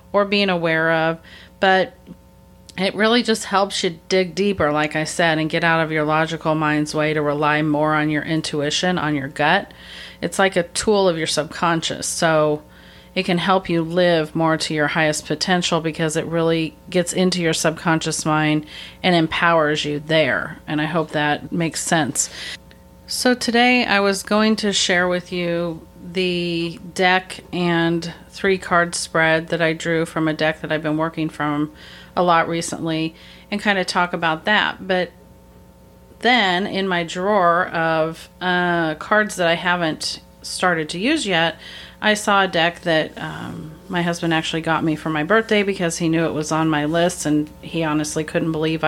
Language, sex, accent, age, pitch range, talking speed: English, female, American, 40-59, 155-180 Hz, 180 wpm